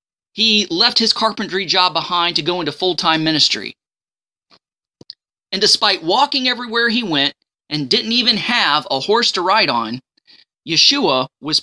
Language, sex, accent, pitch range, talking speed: English, male, American, 155-230 Hz, 145 wpm